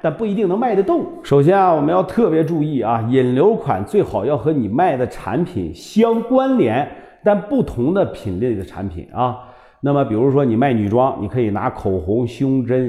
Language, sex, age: Chinese, male, 50-69